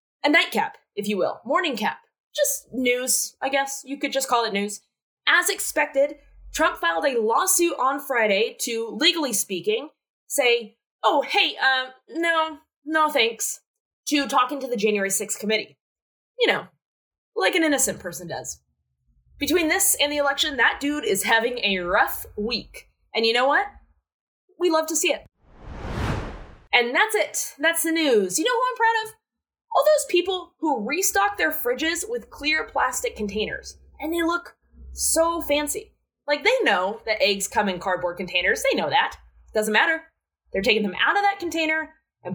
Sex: female